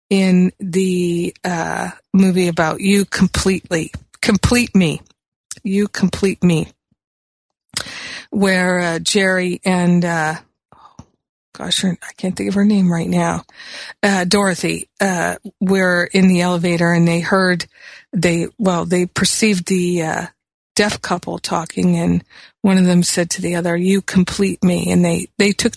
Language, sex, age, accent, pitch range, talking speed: English, female, 50-69, American, 175-195 Hz, 140 wpm